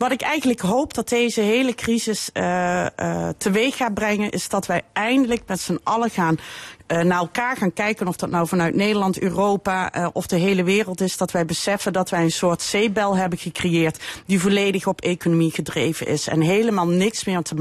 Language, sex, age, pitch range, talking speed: Dutch, female, 40-59, 175-220 Hz, 200 wpm